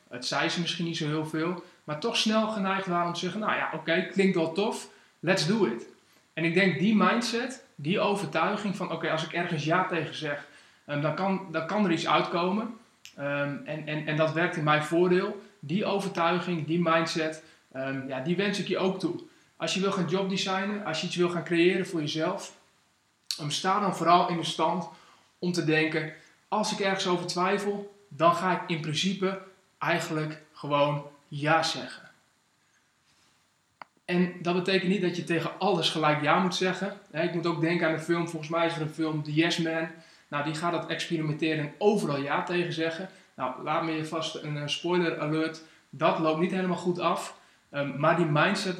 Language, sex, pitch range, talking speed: Dutch, male, 160-185 Hz, 190 wpm